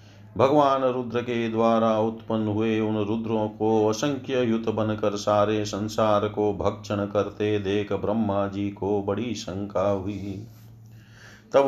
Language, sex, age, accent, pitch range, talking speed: Hindi, male, 40-59, native, 105-115 Hz, 130 wpm